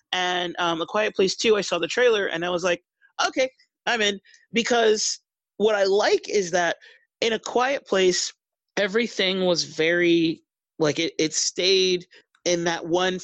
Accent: American